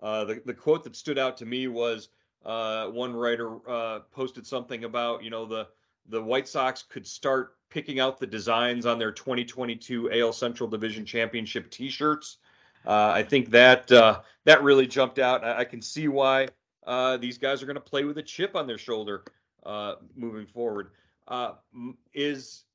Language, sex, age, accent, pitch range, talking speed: English, male, 40-59, American, 115-135 Hz, 180 wpm